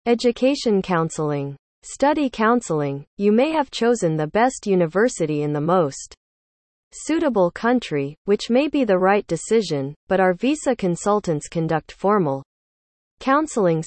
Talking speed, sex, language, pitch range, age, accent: 125 wpm, female, Gujarati, 160-230 Hz, 40-59, American